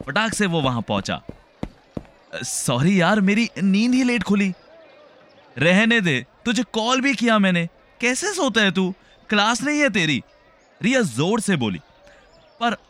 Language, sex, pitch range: Hindi, male, 145-225 Hz